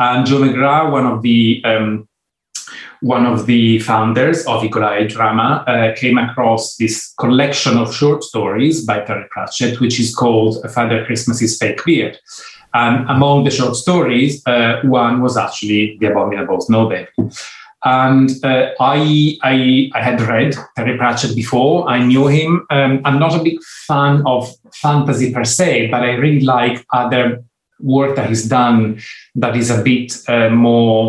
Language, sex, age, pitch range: English, male, 30-49, 115-135 Hz